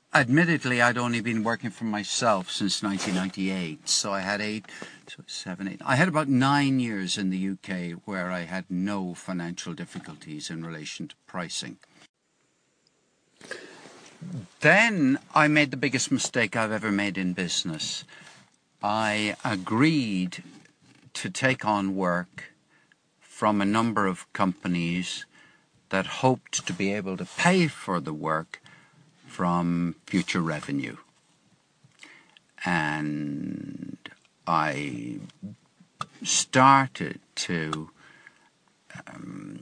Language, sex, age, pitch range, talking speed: English, male, 60-79, 95-125 Hz, 110 wpm